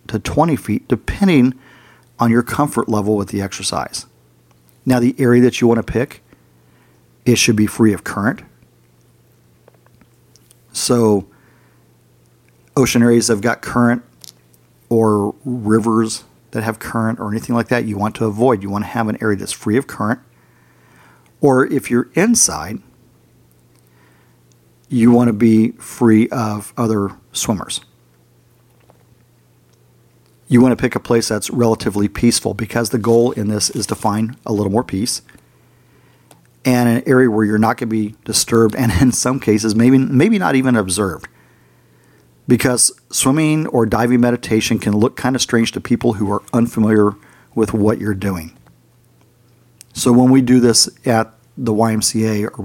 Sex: male